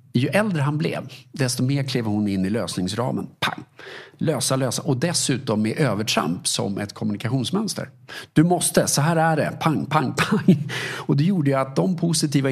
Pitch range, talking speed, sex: 110-145 Hz, 175 wpm, male